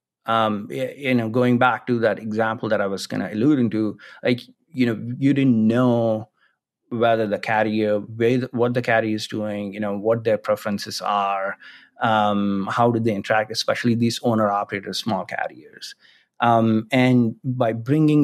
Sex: male